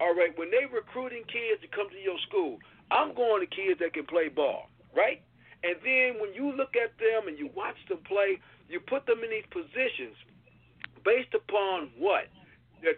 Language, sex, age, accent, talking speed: English, male, 50-69, American, 195 wpm